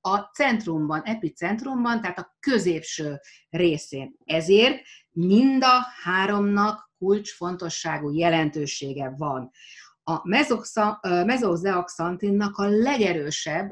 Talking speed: 80 wpm